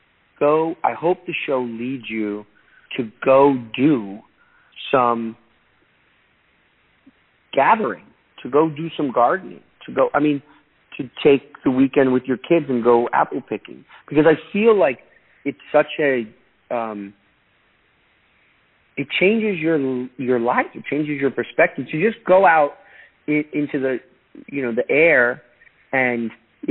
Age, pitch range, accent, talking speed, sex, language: 40-59, 115-145 Hz, American, 140 wpm, male, English